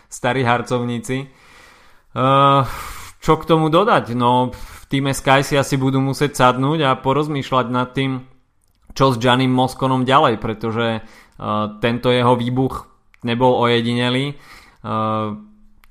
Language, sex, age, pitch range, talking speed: Slovak, male, 20-39, 115-130 Hz, 125 wpm